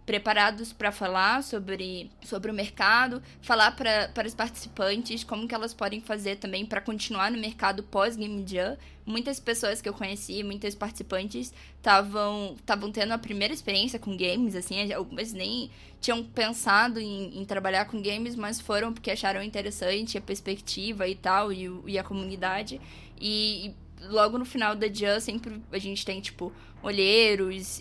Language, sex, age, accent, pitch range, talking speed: Portuguese, female, 10-29, Brazilian, 190-220 Hz, 160 wpm